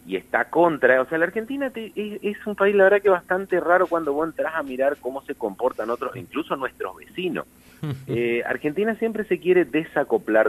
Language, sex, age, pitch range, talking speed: Spanish, male, 40-59, 120-200 Hz, 190 wpm